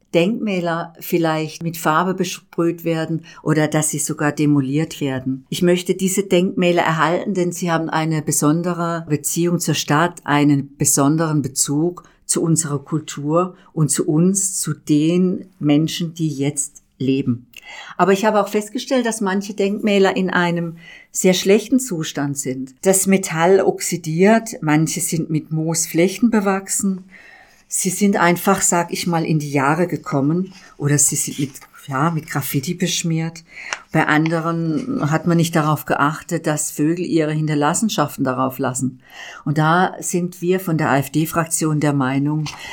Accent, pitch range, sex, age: German, 150-180 Hz, female, 50-69